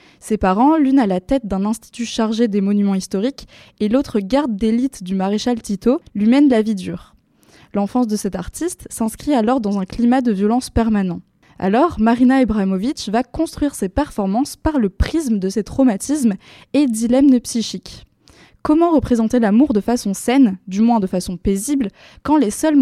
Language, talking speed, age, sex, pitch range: French, 175 wpm, 20-39, female, 205-270 Hz